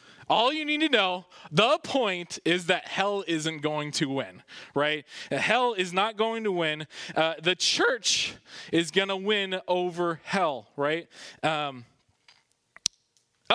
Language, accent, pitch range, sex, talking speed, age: English, American, 140-195 Hz, male, 140 wpm, 20-39